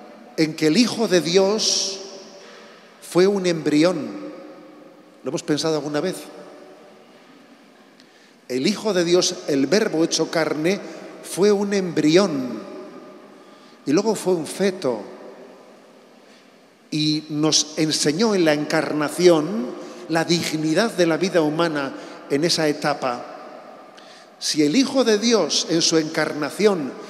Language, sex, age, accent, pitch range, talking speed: Spanish, male, 40-59, Spanish, 155-195 Hz, 115 wpm